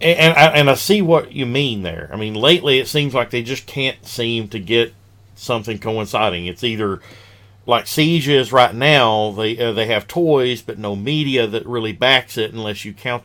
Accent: American